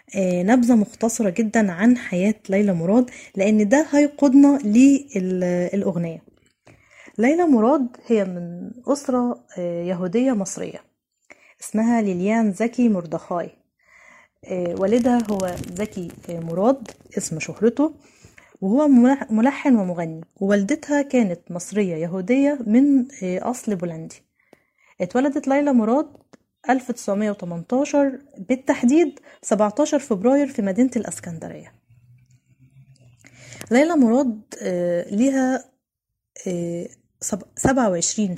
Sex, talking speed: female, 85 wpm